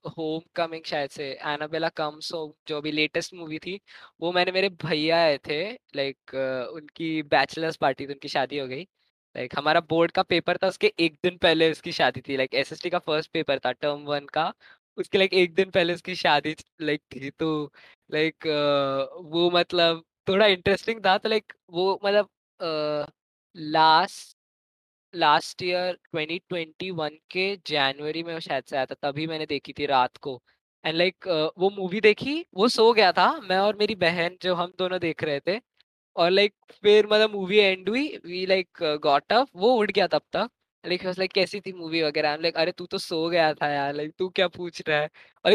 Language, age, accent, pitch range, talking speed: Hindi, 20-39, native, 155-195 Hz, 185 wpm